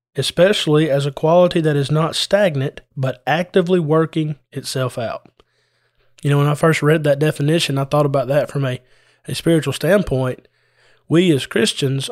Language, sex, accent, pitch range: English, male, American, 135-160 Hz